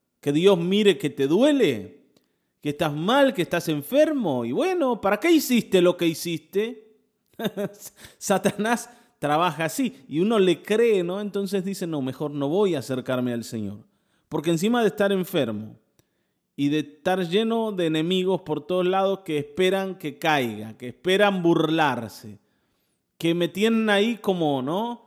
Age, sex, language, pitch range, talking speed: 30-49, male, Spanish, 150-220 Hz, 155 wpm